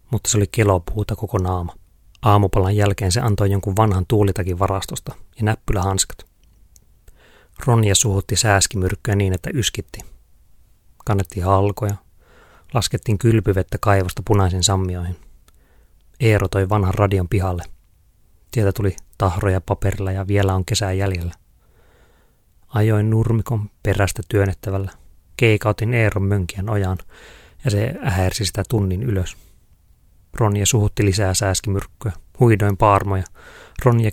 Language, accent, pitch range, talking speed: Finnish, native, 90-105 Hz, 115 wpm